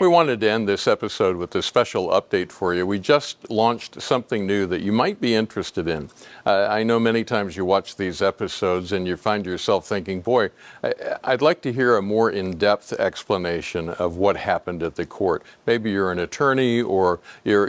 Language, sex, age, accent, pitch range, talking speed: English, male, 50-69, American, 95-120 Hz, 195 wpm